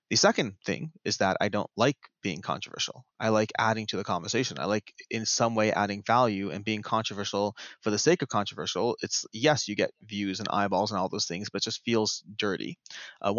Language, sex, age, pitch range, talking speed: English, male, 20-39, 105-125 Hz, 215 wpm